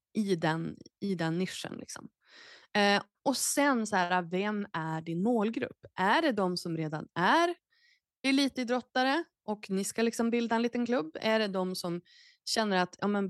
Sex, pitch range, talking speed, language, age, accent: female, 185-270 Hz, 165 wpm, Swedish, 20-39, native